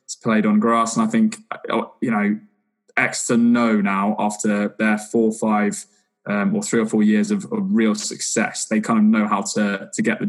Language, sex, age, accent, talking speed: English, male, 20-39, British, 205 wpm